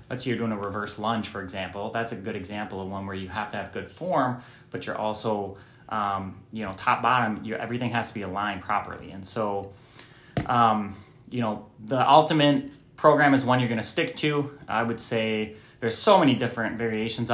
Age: 20-39